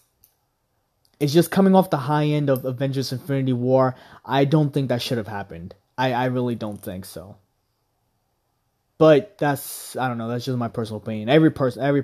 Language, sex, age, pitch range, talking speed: English, male, 20-39, 125-160 Hz, 185 wpm